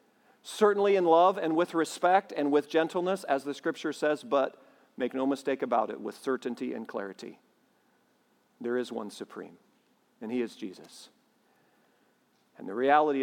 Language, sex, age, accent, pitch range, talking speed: English, male, 50-69, American, 145-230 Hz, 155 wpm